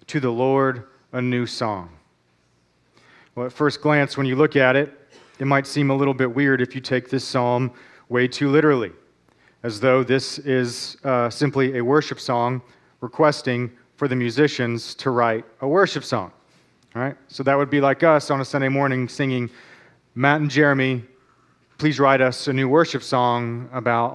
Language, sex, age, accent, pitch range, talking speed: English, male, 40-59, American, 115-145 Hz, 180 wpm